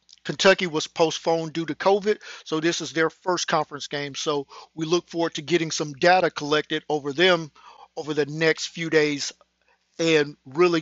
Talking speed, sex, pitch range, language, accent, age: 170 wpm, male, 155-180 Hz, English, American, 50-69